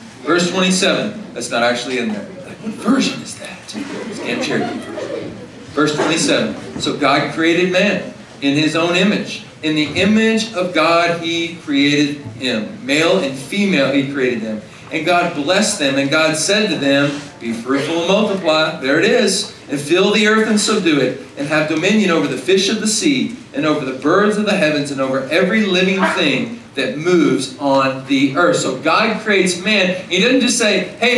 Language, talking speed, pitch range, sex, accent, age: English, 185 wpm, 150-220 Hz, male, American, 40-59